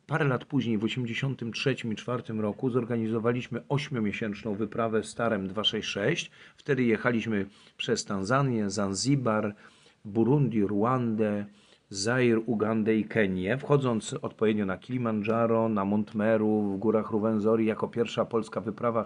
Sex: male